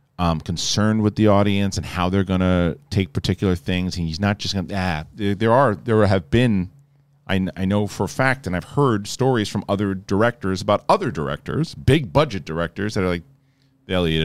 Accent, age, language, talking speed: American, 40-59, English, 210 wpm